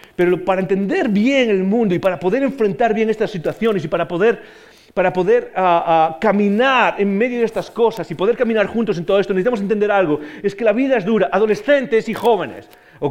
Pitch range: 210-265 Hz